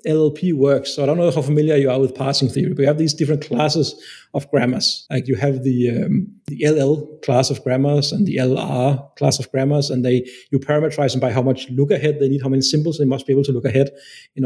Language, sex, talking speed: English, male, 250 wpm